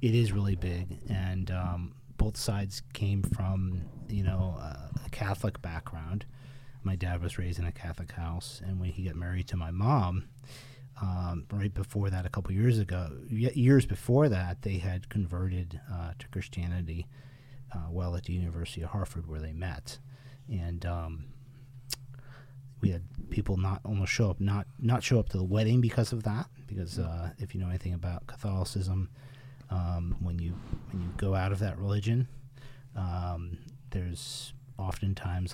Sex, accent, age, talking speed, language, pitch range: male, American, 40-59, 165 wpm, English, 90-125 Hz